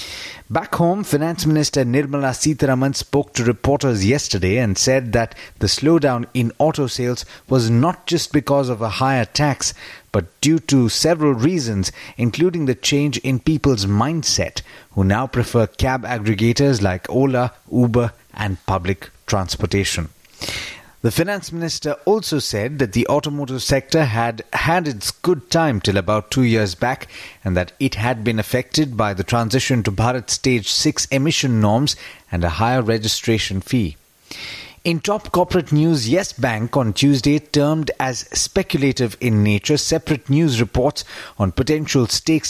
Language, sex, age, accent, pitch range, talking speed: English, male, 30-49, Indian, 115-150 Hz, 150 wpm